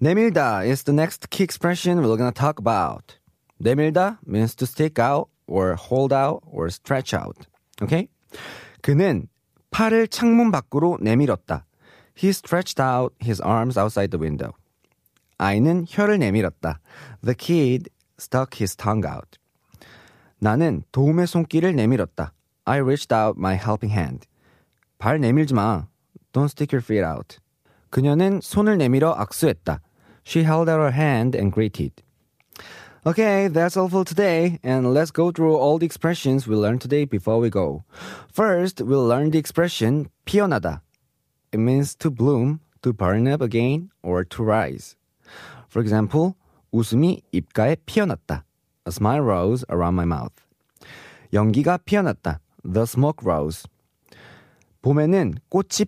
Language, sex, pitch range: Korean, male, 105-165 Hz